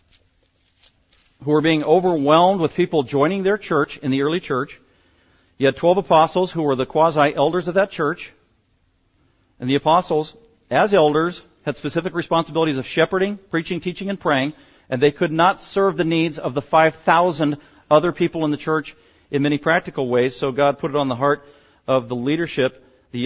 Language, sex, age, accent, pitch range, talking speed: English, male, 50-69, American, 115-155 Hz, 175 wpm